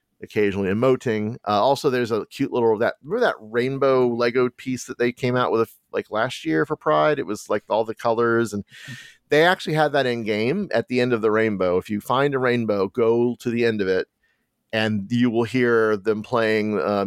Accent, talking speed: American, 215 wpm